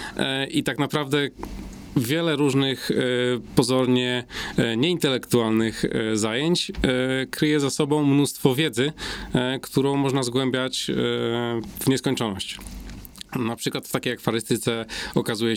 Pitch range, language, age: 110-125 Hz, Polish, 40-59